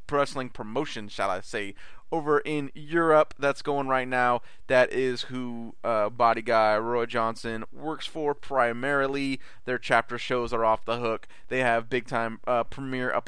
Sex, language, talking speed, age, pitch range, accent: male, English, 165 wpm, 20-39, 110-130 Hz, American